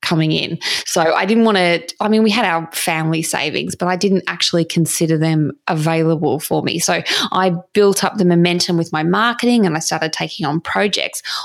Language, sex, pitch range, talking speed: English, female, 170-210 Hz, 200 wpm